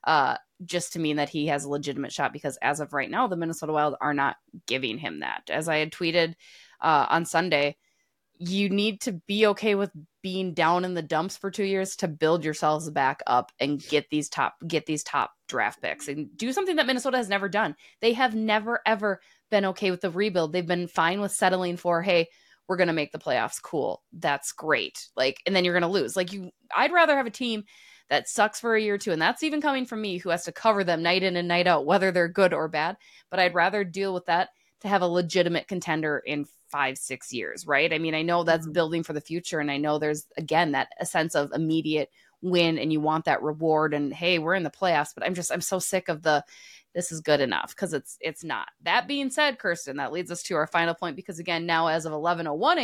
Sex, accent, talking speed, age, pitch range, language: female, American, 240 wpm, 20-39, 155-200 Hz, English